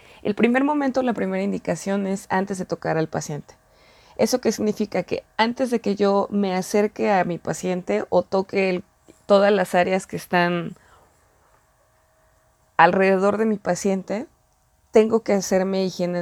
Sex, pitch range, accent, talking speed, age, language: female, 180-220 Hz, Mexican, 150 wpm, 20-39, English